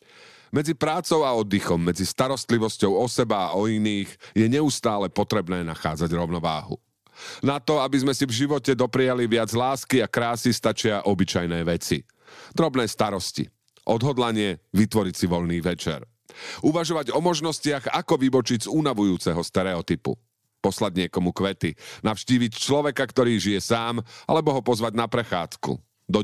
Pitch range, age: 95-135 Hz, 40-59